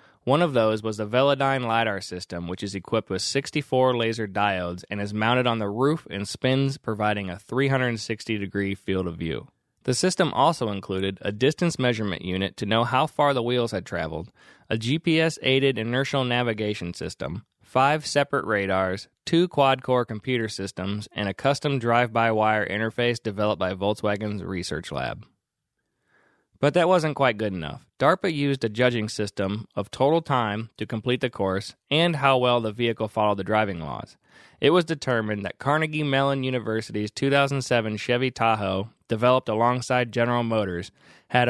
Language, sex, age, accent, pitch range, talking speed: English, male, 20-39, American, 100-130 Hz, 160 wpm